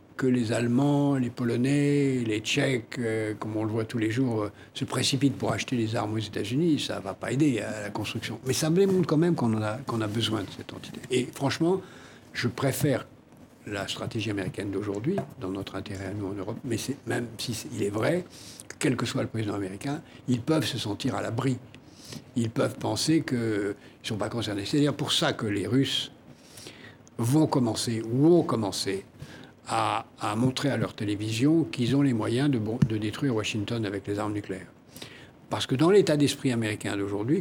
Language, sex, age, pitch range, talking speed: French, male, 60-79, 105-135 Hz, 200 wpm